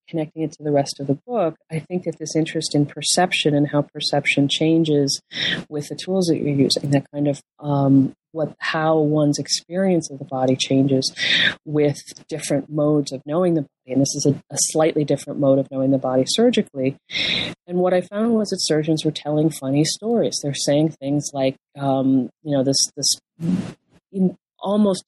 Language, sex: English, female